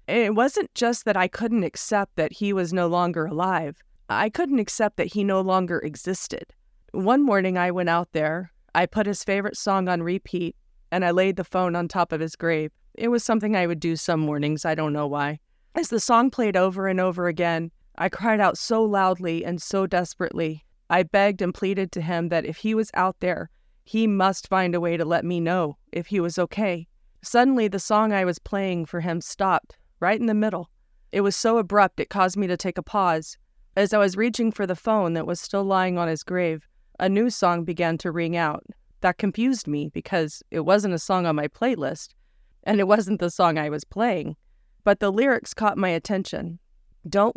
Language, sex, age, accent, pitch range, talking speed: English, female, 40-59, American, 170-205 Hz, 215 wpm